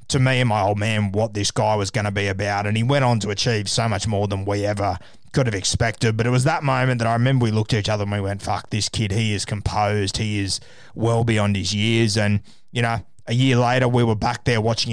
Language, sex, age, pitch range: English, male, 20-39, 105-125 Hz